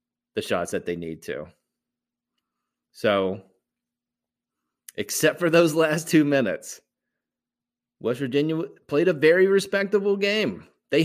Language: English